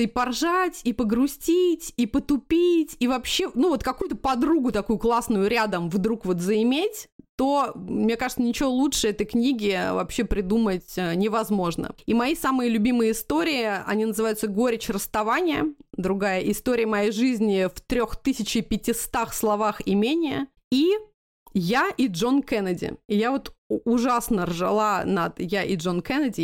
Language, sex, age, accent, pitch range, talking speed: Russian, female, 30-49, native, 220-295 Hz, 140 wpm